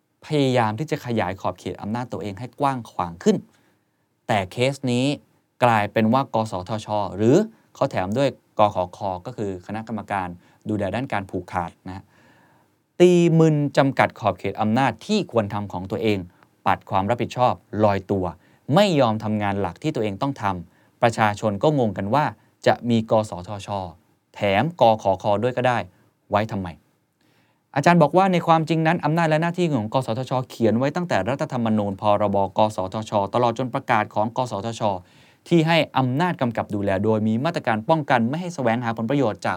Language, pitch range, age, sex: Thai, 100-140 Hz, 20-39, male